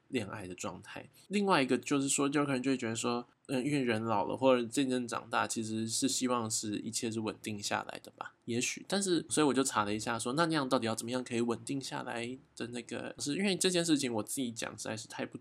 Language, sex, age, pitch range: Chinese, male, 20-39, 110-135 Hz